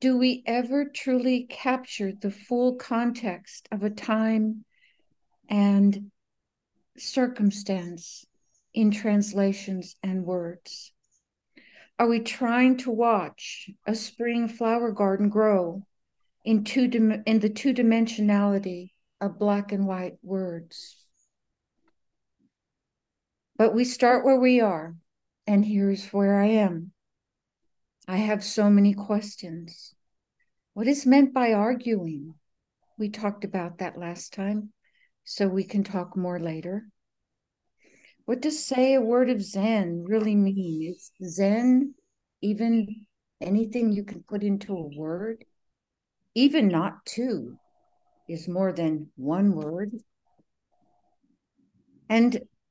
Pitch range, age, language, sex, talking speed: 195-240 Hz, 60-79, English, female, 115 wpm